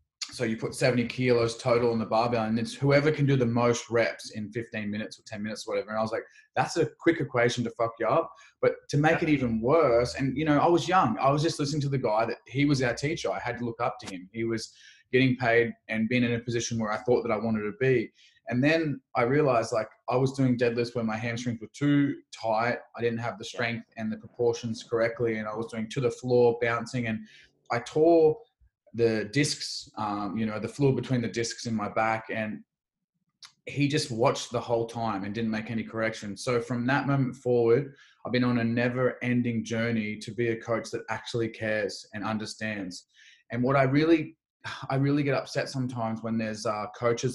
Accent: Australian